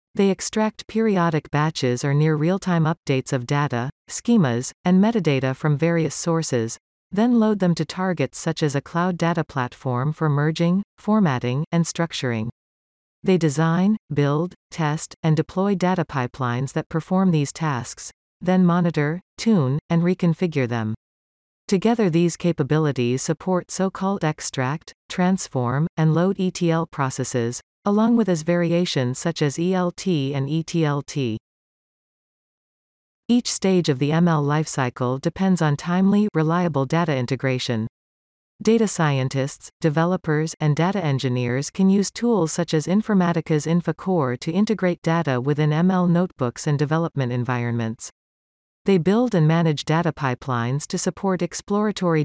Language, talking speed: English, 130 wpm